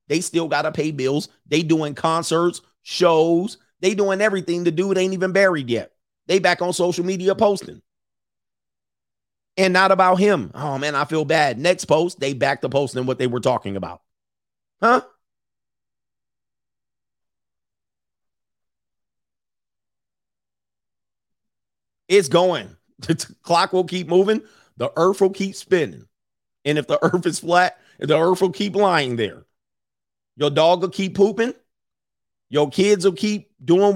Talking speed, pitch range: 145 wpm, 125-185 Hz